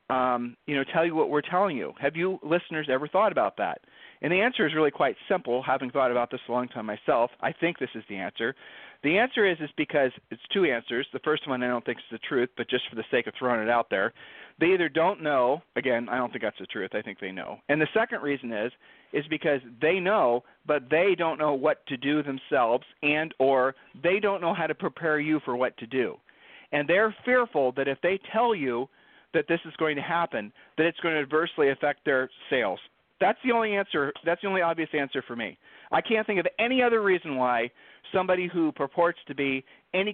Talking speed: 235 wpm